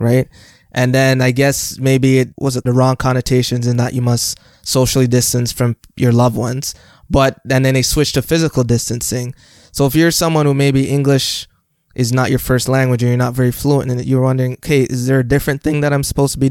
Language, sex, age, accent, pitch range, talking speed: English, male, 20-39, American, 125-145 Hz, 225 wpm